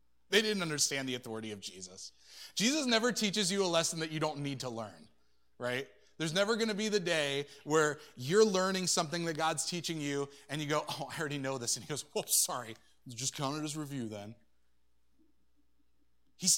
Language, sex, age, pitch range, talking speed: English, male, 30-49, 120-170 Hz, 195 wpm